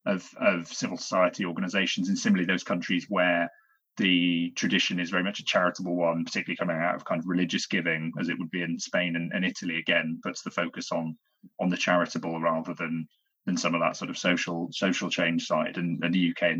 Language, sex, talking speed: English, male, 215 wpm